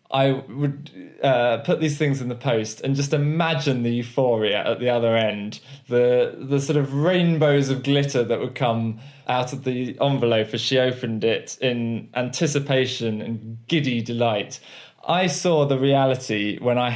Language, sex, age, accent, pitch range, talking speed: English, male, 20-39, British, 115-150 Hz, 165 wpm